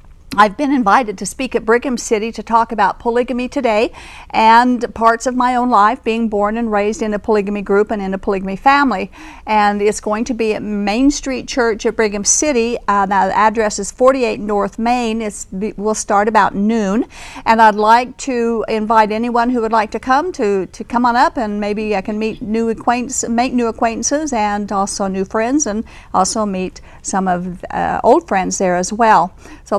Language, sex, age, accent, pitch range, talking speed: English, female, 50-69, American, 205-245 Hz, 195 wpm